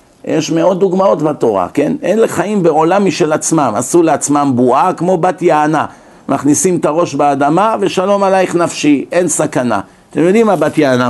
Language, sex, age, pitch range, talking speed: Hebrew, male, 50-69, 140-175 Hz, 160 wpm